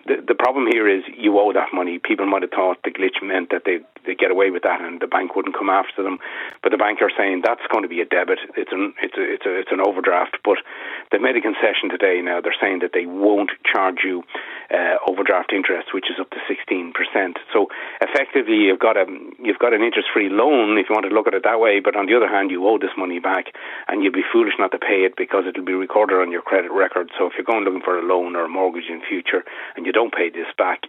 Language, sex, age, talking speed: English, male, 40-59, 265 wpm